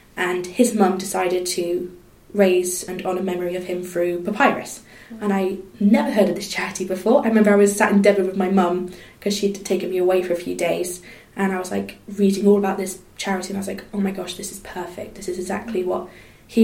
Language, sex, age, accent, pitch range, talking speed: English, female, 20-39, British, 185-210 Hz, 230 wpm